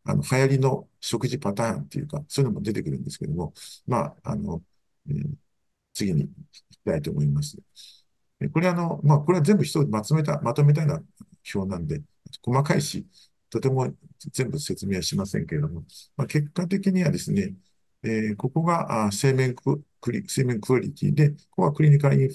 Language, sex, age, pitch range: Japanese, male, 50-69, 105-150 Hz